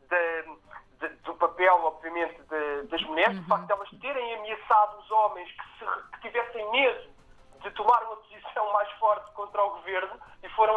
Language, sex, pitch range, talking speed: Portuguese, male, 175-210 Hz, 180 wpm